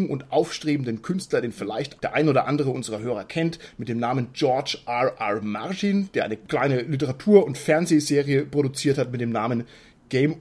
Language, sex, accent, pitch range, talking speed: German, male, German, 130-165 Hz, 180 wpm